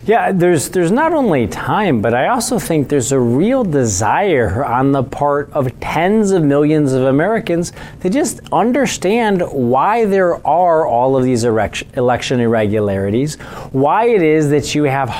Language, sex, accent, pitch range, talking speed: English, male, American, 125-165 Hz, 160 wpm